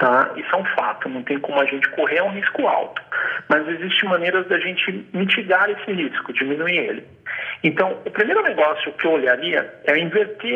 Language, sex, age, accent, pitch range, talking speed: Portuguese, male, 40-59, Brazilian, 135-190 Hz, 200 wpm